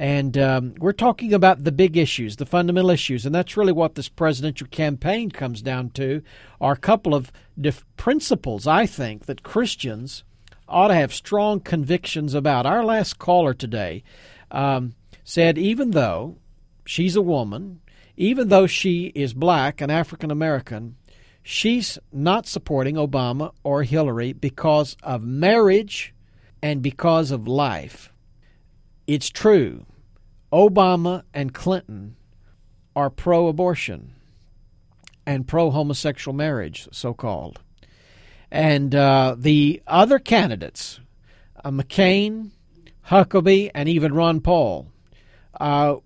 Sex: male